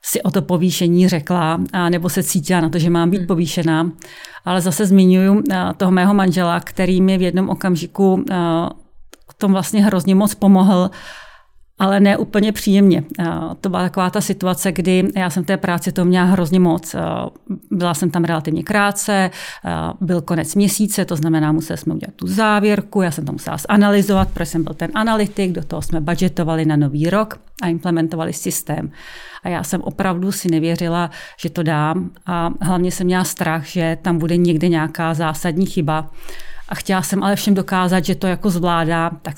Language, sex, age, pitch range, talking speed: Czech, female, 40-59, 170-195 Hz, 180 wpm